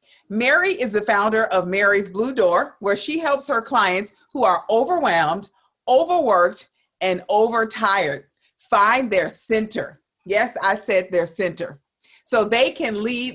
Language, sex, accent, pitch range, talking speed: English, female, American, 185-260 Hz, 140 wpm